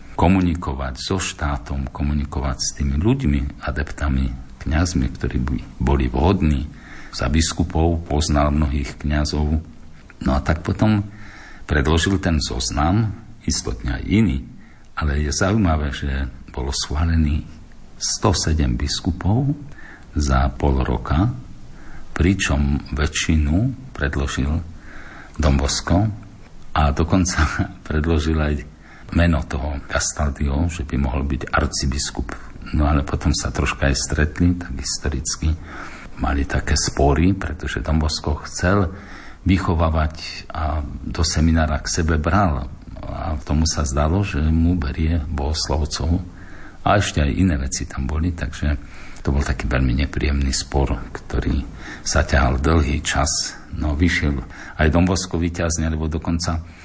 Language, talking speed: Slovak, 120 wpm